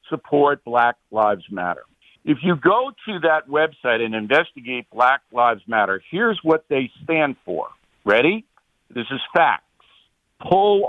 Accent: American